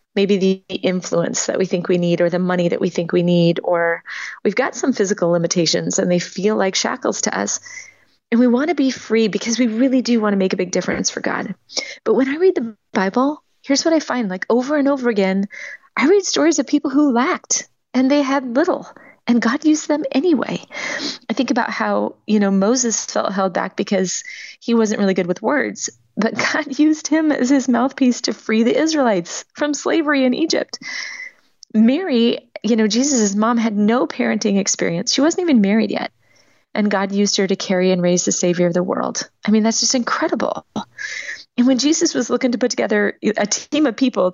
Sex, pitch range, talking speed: female, 190-270 Hz, 210 wpm